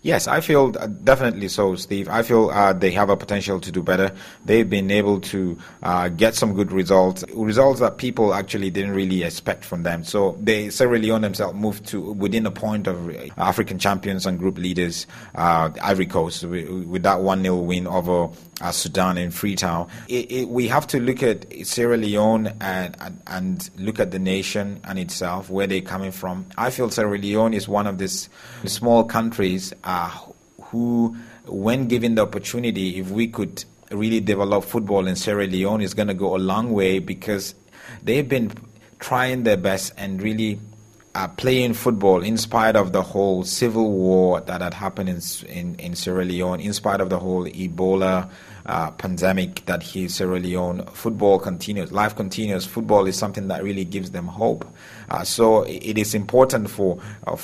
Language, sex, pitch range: English, male, 95-110 Hz